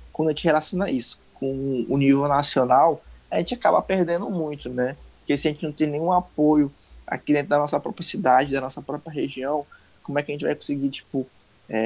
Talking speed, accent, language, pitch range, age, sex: 205 wpm, Brazilian, Portuguese, 130-155 Hz, 20-39, male